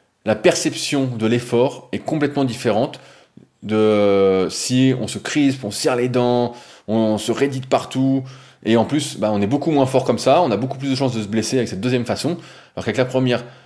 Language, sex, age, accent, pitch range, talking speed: French, male, 20-39, French, 105-130 Hz, 210 wpm